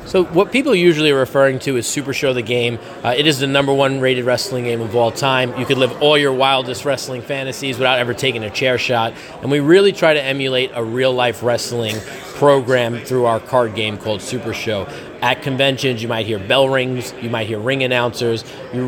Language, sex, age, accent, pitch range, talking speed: English, male, 30-49, American, 120-140 Hz, 215 wpm